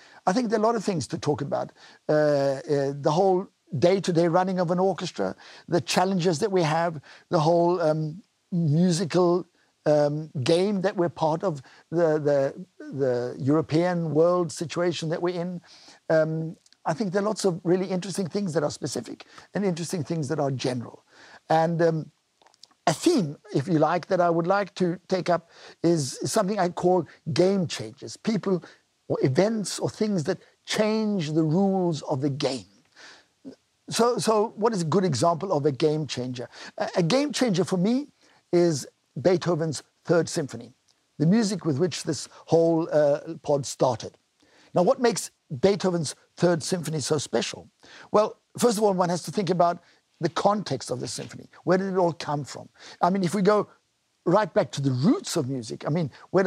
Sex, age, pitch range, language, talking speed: male, 60-79, 155-190 Hz, English, 175 wpm